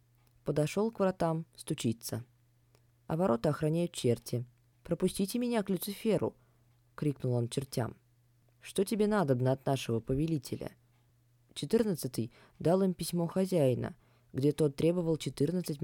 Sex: female